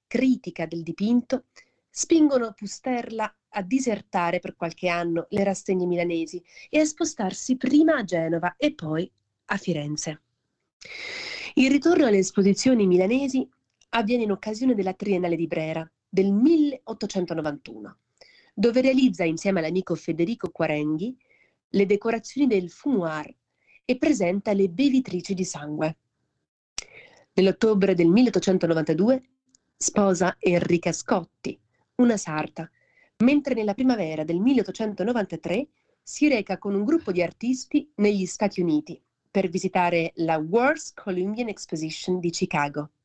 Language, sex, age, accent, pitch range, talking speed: Italian, female, 30-49, native, 175-245 Hz, 115 wpm